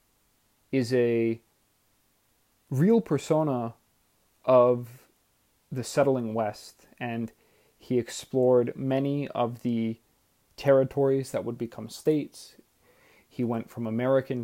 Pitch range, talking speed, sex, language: 110-130 Hz, 95 wpm, male, English